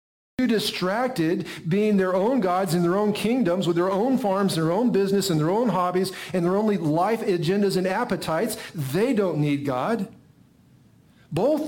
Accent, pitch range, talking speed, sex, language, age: American, 140-190 Hz, 165 wpm, male, English, 50-69